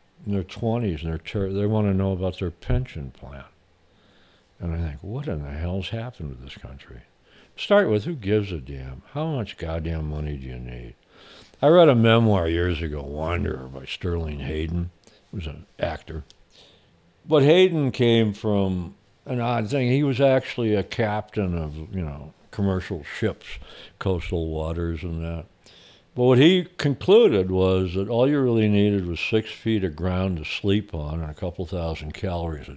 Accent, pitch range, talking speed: American, 80-110 Hz, 175 wpm